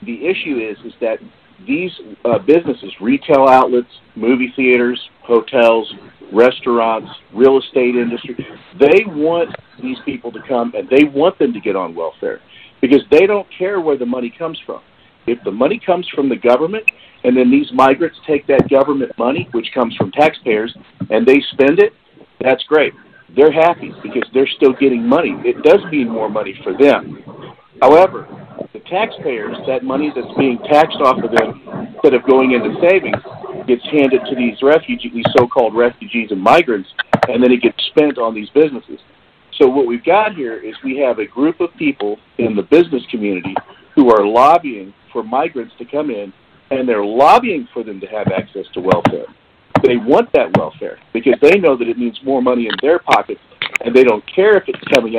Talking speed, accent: 185 wpm, American